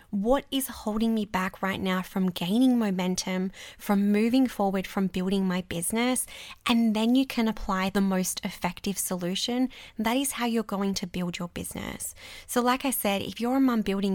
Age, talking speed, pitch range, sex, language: 20-39, 185 wpm, 185-230 Hz, female, English